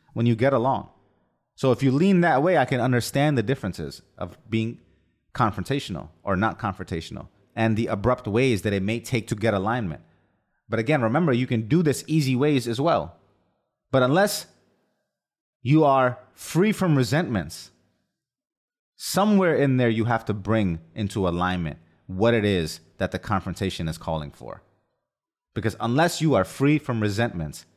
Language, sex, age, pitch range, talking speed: English, male, 30-49, 95-130 Hz, 160 wpm